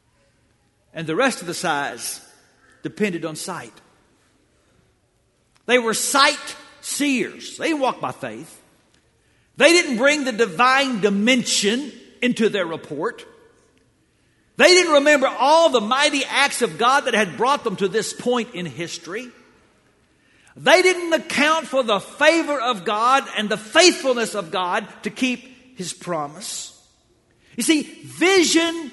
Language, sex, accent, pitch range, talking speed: English, male, American, 160-260 Hz, 135 wpm